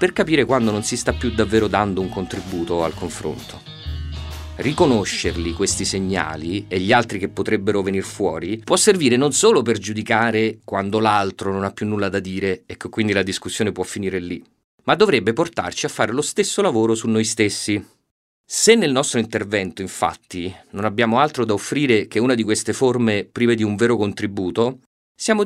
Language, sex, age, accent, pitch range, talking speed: Italian, male, 30-49, native, 95-130 Hz, 180 wpm